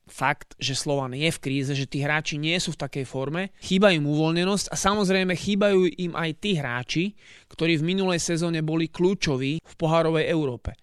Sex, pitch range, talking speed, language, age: male, 145-180 Hz, 185 wpm, Slovak, 30-49